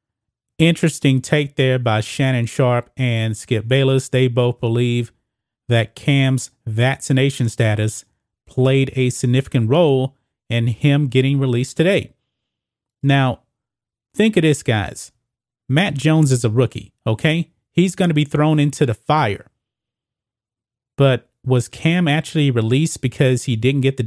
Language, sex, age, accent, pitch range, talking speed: English, male, 30-49, American, 120-145 Hz, 135 wpm